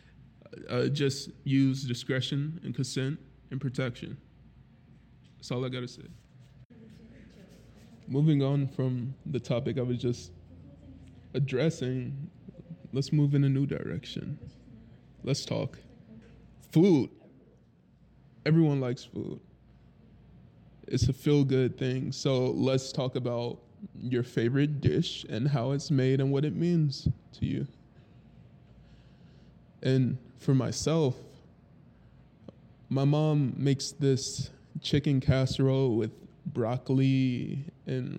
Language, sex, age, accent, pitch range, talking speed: English, male, 20-39, American, 130-145 Hz, 105 wpm